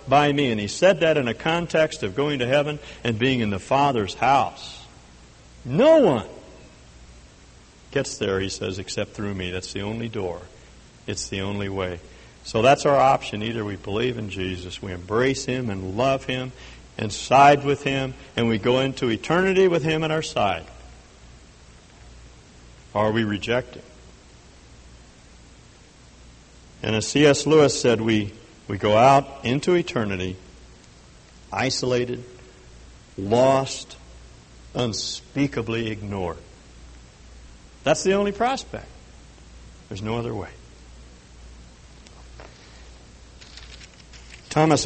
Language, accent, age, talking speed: English, American, 60-79, 125 wpm